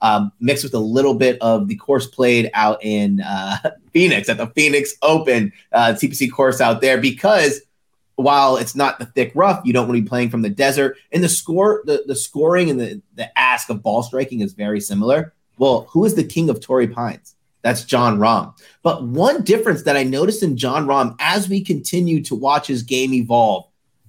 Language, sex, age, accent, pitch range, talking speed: English, male, 30-49, American, 125-175 Hz, 205 wpm